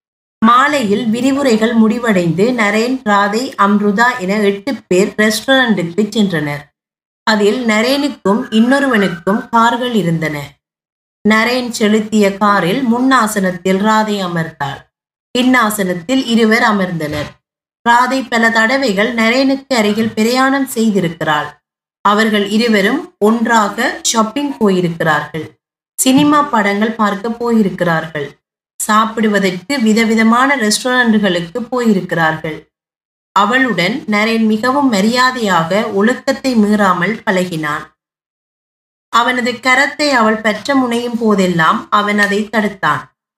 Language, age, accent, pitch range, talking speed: Tamil, 20-39, native, 195-245 Hz, 85 wpm